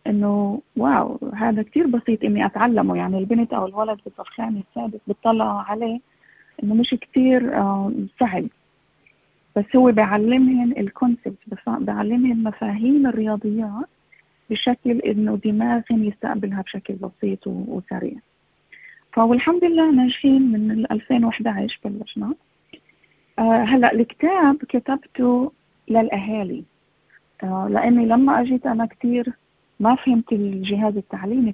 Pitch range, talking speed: 210-250 Hz, 105 wpm